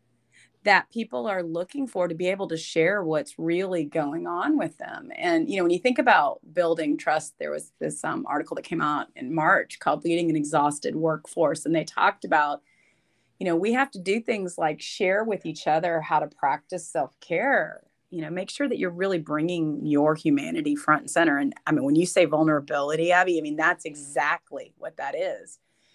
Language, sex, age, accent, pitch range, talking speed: English, female, 30-49, American, 155-200 Hz, 205 wpm